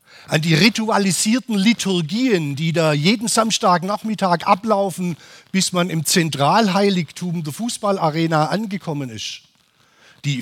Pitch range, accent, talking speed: 145-195 Hz, German, 110 wpm